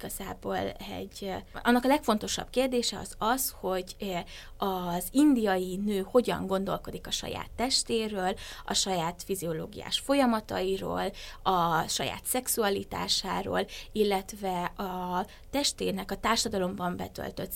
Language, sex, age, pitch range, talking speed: Hungarian, female, 20-39, 180-225 Hz, 100 wpm